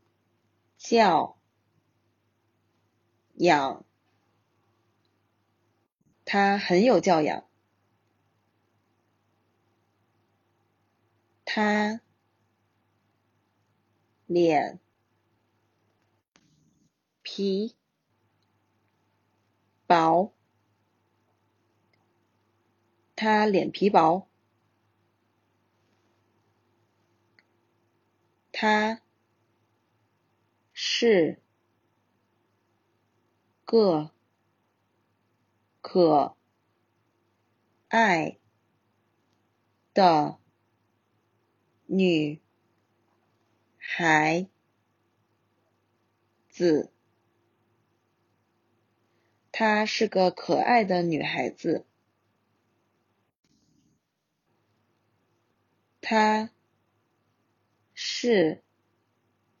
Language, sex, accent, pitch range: Chinese, female, native, 110-115 Hz